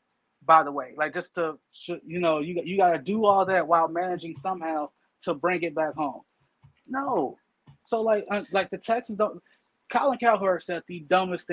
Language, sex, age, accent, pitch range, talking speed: English, male, 20-39, American, 160-195 Hz, 175 wpm